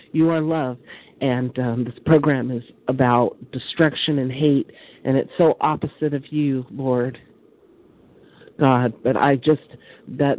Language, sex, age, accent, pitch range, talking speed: English, male, 50-69, American, 130-160 Hz, 140 wpm